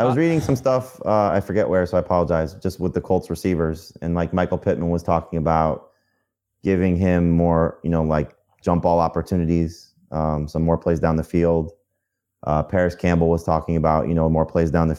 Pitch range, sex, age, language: 80-100 Hz, male, 30-49, English